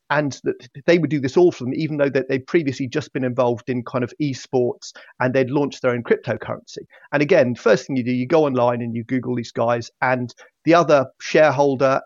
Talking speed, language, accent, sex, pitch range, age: 225 wpm, English, British, male, 125-155 Hz, 30-49